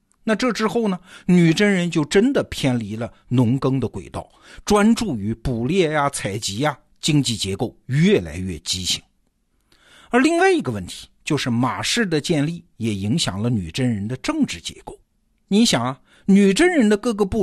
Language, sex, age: Chinese, male, 50-69